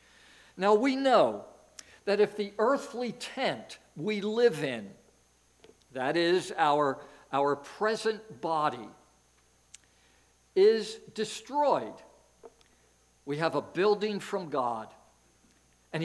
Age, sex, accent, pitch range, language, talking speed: 60-79, male, American, 130-210 Hz, English, 95 wpm